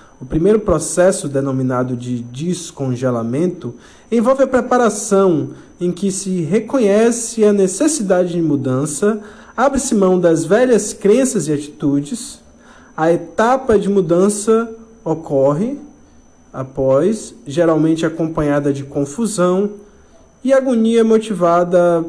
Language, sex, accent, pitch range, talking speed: Portuguese, male, Brazilian, 150-220 Hz, 100 wpm